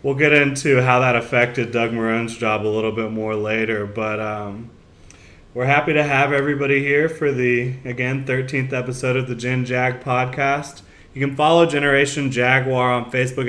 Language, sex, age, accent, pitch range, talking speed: English, male, 20-39, American, 115-135 Hz, 175 wpm